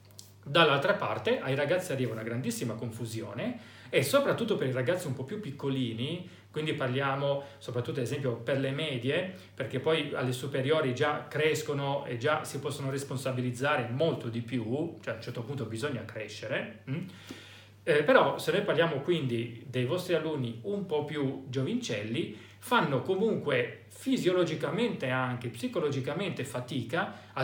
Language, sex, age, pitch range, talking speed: Italian, male, 40-59, 120-165 Hz, 145 wpm